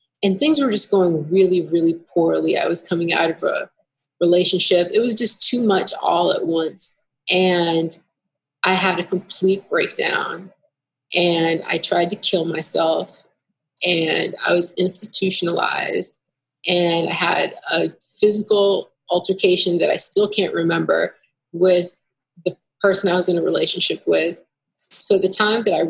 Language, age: English, 30-49